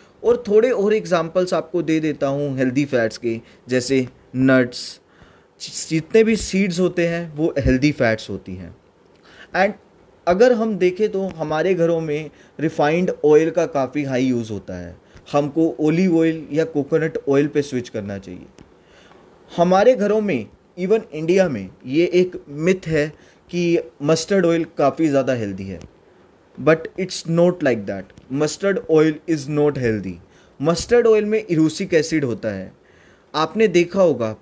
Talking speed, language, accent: 150 wpm, Hindi, native